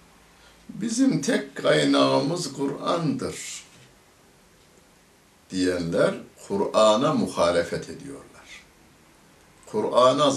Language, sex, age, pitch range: Turkish, male, 60-79, 85-125 Hz